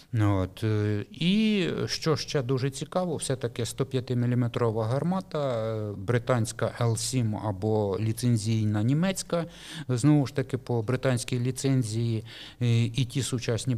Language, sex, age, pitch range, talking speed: Russian, male, 50-69, 110-130 Hz, 100 wpm